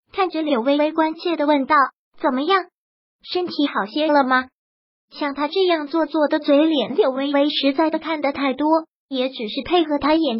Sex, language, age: male, Chinese, 20-39